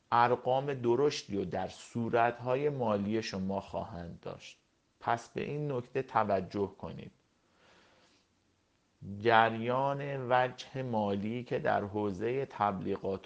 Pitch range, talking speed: 95-125 Hz, 105 wpm